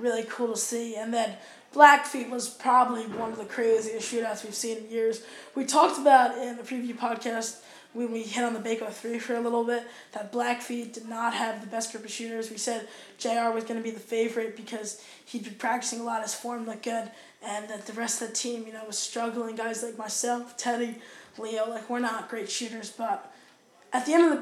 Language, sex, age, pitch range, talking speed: English, female, 10-29, 225-250 Hz, 230 wpm